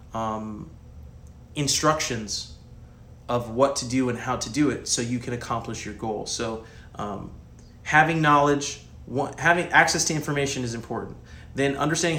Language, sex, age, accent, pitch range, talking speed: English, male, 30-49, American, 120-145 Hz, 145 wpm